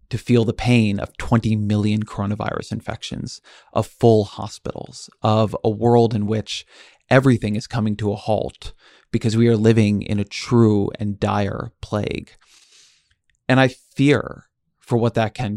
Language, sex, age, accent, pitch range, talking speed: English, male, 30-49, American, 105-120 Hz, 155 wpm